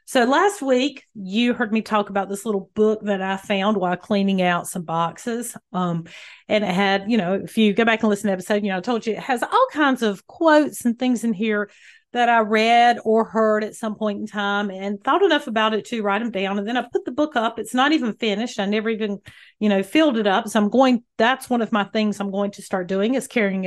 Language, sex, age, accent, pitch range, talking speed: English, female, 40-59, American, 200-250 Hz, 260 wpm